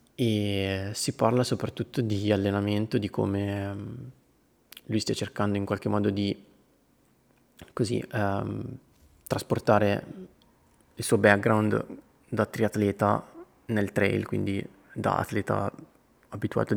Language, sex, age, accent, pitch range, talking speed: Italian, male, 20-39, native, 100-120 Hz, 105 wpm